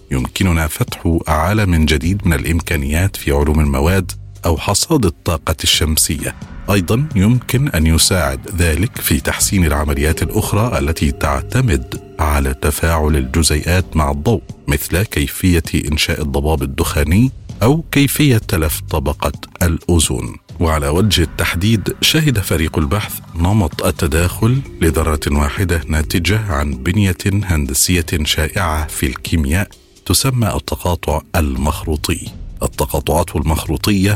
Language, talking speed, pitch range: Arabic, 110 wpm, 80-100 Hz